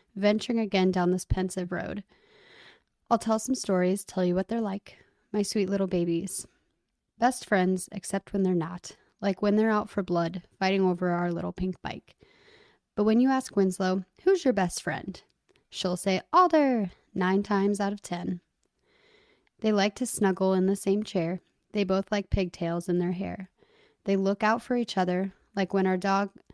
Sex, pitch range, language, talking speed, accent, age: female, 185-220 Hz, English, 180 wpm, American, 20-39